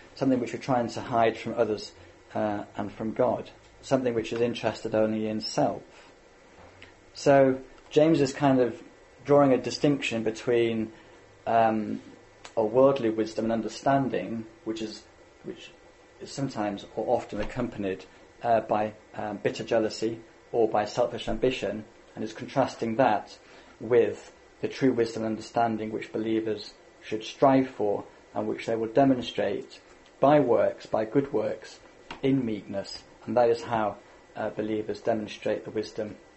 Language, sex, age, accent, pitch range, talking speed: English, male, 30-49, British, 110-120 Hz, 145 wpm